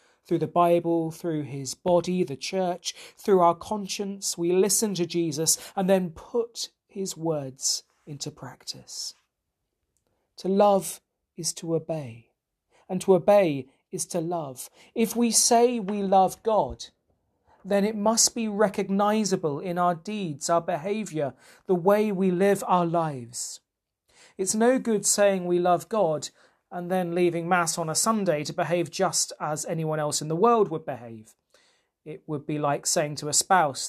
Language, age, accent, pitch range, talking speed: English, 40-59, British, 150-195 Hz, 155 wpm